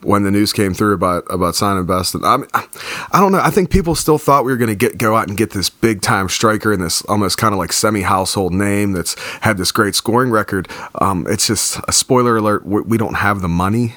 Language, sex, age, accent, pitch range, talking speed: English, male, 30-49, American, 95-115 Hz, 245 wpm